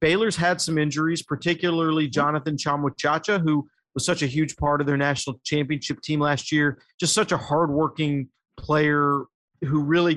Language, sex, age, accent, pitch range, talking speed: English, male, 40-59, American, 145-170 Hz, 160 wpm